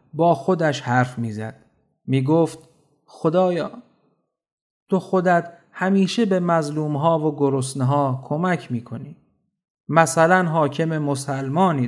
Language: Persian